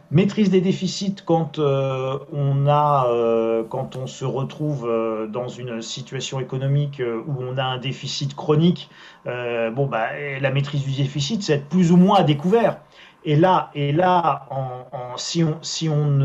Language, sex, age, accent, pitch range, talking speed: French, male, 40-59, French, 135-180 Hz, 175 wpm